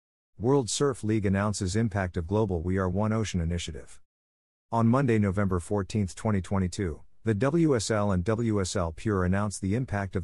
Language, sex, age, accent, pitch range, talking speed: English, male, 50-69, American, 90-115 Hz, 150 wpm